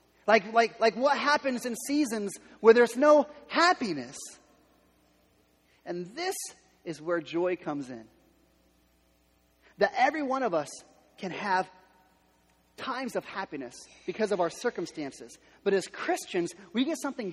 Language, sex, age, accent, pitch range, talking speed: English, male, 30-49, American, 155-255 Hz, 130 wpm